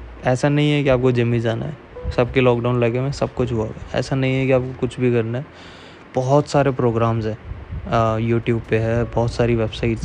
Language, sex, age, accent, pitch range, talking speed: Hindi, male, 20-39, native, 115-130 Hz, 215 wpm